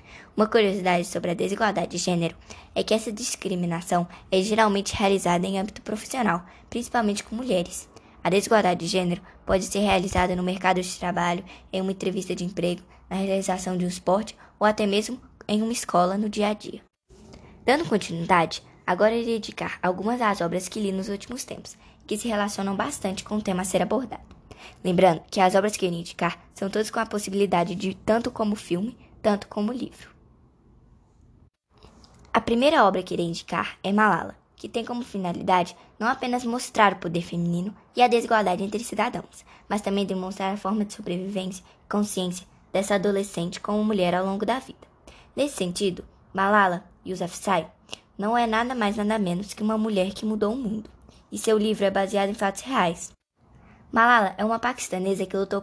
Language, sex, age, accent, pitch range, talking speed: Portuguese, male, 10-29, Brazilian, 185-215 Hz, 180 wpm